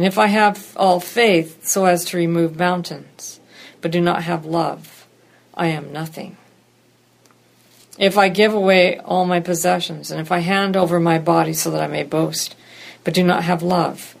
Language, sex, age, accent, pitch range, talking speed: English, female, 50-69, American, 165-190 Hz, 180 wpm